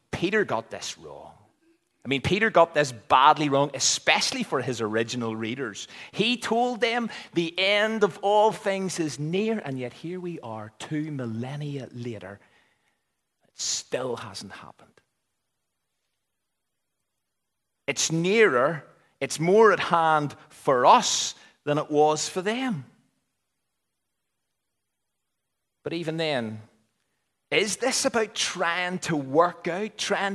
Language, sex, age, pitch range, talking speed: English, male, 40-59, 140-220 Hz, 125 wpm